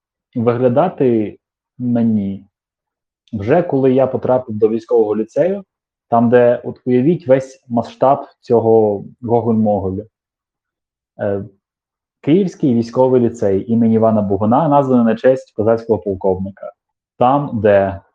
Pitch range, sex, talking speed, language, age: 105-125 Hz, male, 105 wpm, Ukrainian, 20-39